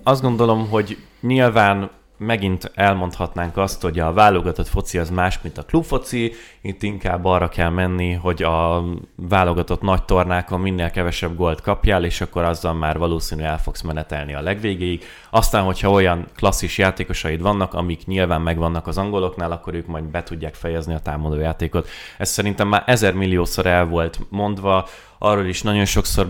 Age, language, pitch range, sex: 20-39, Hungarian, 85-100 Hz, male